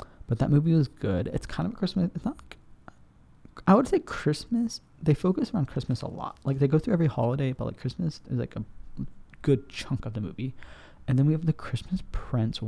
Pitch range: 115-150 Hz